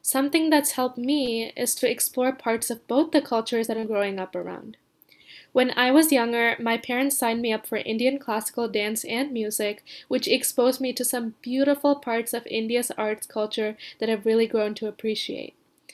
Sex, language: female, English